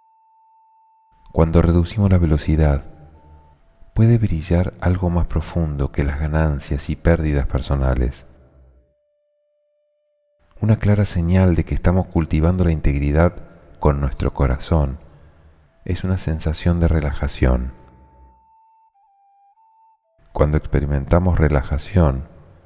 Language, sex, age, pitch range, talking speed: Spanish, male, 40-59, 75-95 Hz, 95 wpm